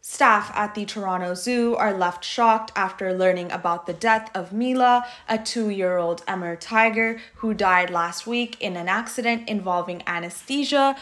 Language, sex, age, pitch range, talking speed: English, female, 10-29, 180-250 Hz, 150 wpm